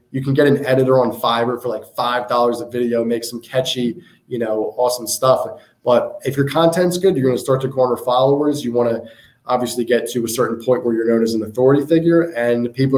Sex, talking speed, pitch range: male, 225 wpm, 115-135 Hz